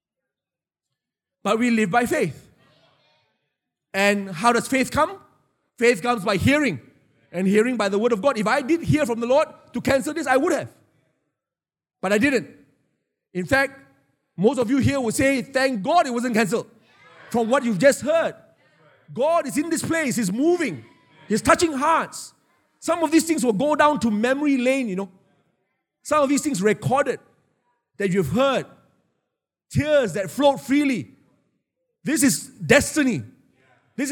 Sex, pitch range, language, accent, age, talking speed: male, 175-255 Hz, English, Malaysian, 30-49, 165 wpm